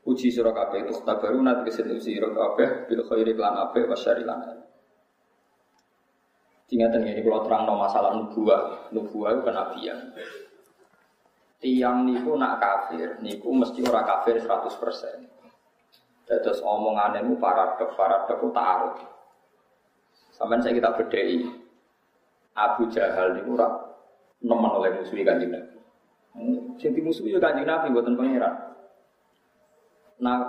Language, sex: Indonesian, male